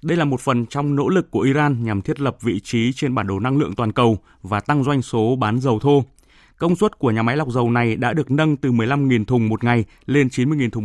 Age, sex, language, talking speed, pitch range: 20-39, male, Vietnamese, 260 wpm, 115-145 Hz